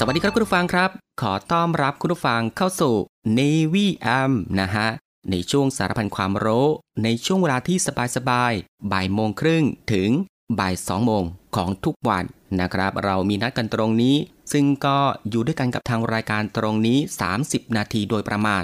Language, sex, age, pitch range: Thai, male, 20-39, 100-135 Hz